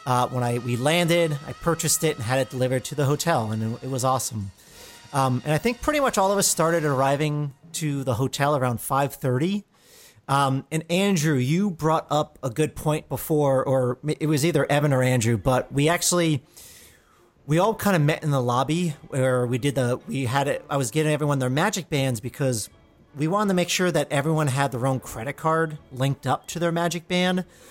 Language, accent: English, American